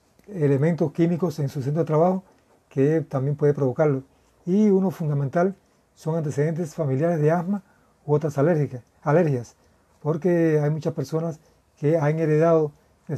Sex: male